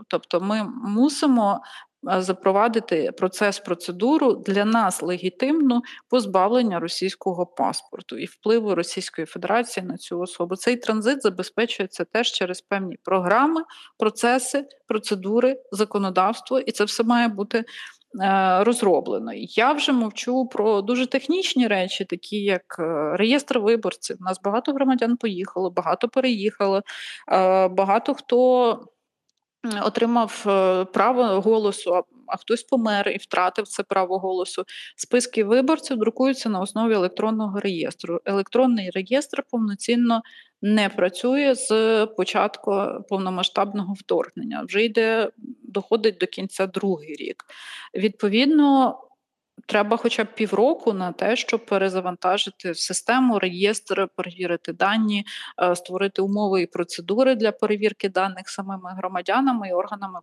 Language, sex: Ukrainian, female